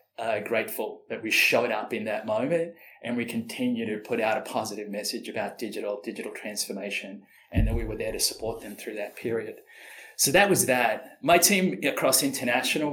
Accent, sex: Australian, male